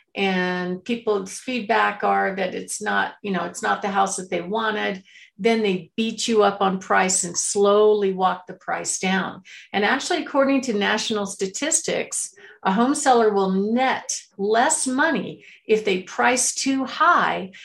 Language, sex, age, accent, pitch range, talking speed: English, female, 50-69, American, 185-230 Hz, 160 wpm